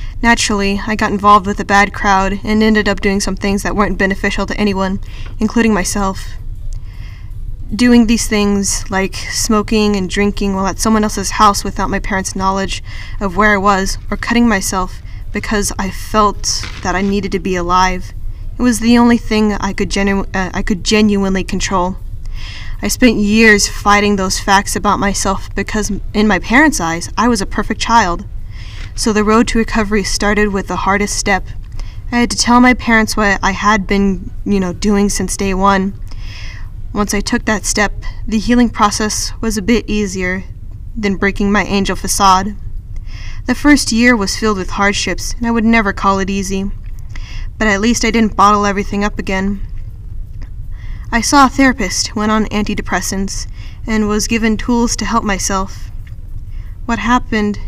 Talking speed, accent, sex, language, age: 175 wpm, American, female, English, 10-29